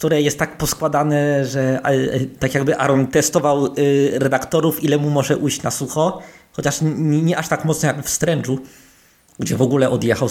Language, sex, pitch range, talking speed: Polish, male, 130-180 Hz, 165 wpm